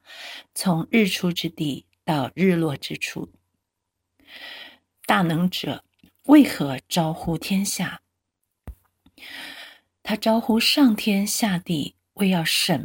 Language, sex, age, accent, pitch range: Chinese, female, 50-69, native, 145-200 Hz